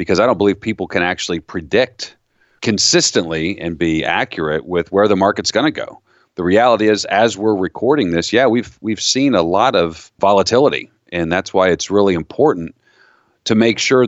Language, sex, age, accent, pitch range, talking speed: English, male, 40-59, American, 90-120 Hz, 185 wpm